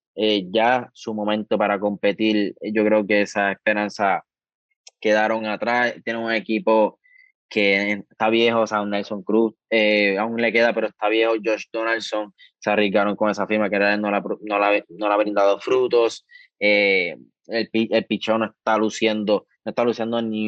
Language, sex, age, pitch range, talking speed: Spanish, male, 20-39, 105-115 Hz, 175 wpm